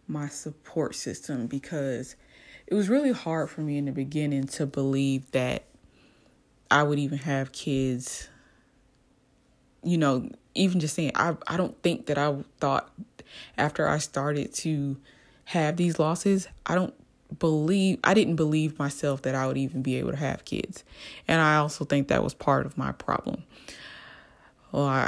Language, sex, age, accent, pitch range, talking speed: English, female, 20-39, American, 135-155 Hz, 160 wpm